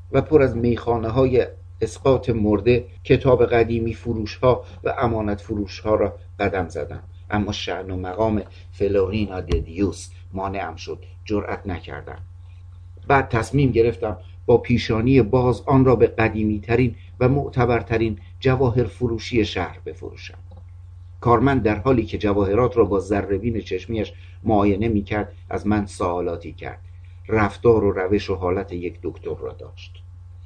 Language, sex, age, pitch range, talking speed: Persian, male, 60-79, 90-120 Hz, 130 wpm